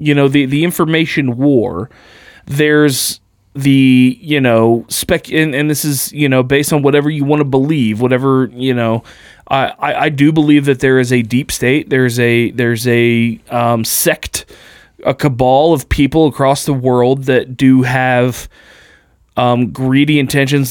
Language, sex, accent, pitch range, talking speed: English, male, American, 125-155 Hz, 165 wpm